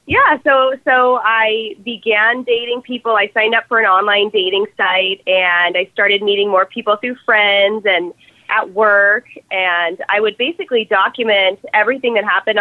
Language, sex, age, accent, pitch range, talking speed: English, female, 20-39, American, 200-245 Hz, 160 wpm